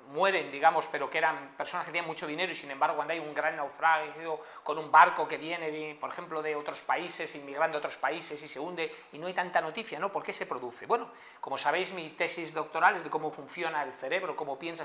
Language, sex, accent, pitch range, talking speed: Spanish, male, Spanish, 160-225 Hz, 240 wpm